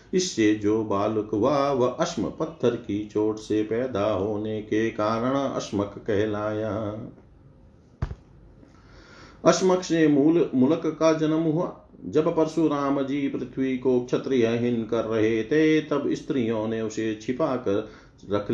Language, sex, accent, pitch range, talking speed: Hindi, male, native, 110-145 Hz, 115 wpm